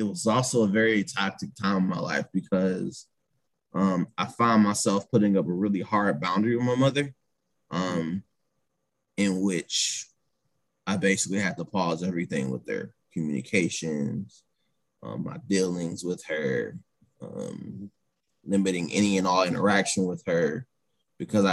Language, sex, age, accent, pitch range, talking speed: English, male, 20-39, American, 90-110 Hz, 140 wpm